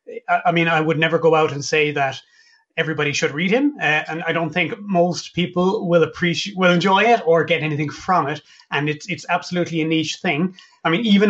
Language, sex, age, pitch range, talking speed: English, male, 30-49, 150-180 Hz, 220 wpm